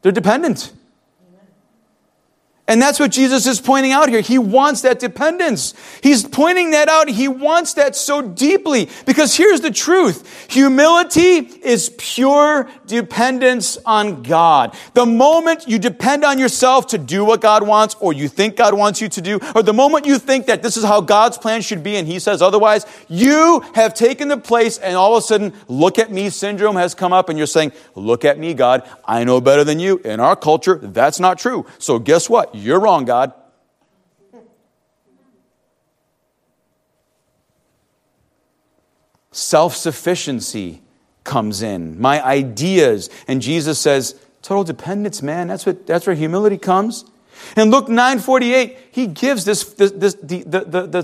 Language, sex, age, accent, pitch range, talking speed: English, male, 40-59, American, 180-260 Hz, 160 wpm